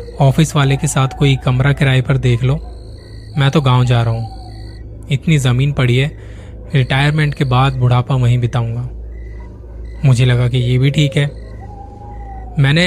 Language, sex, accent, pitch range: Hindi, male, native, 115-150 Hz